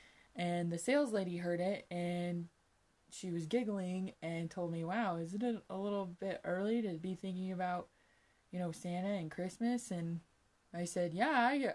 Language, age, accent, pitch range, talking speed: English, 20-39, American, 170-220 Hz, 180 wpm